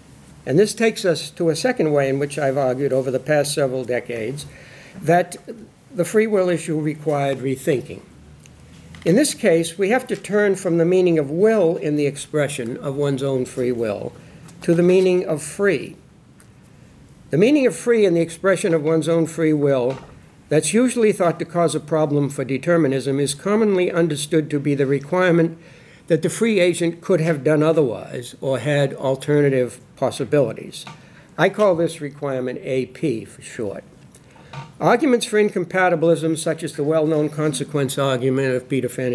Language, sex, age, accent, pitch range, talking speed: English, male, 60-79, American, 140-175 Hz, 165 wpm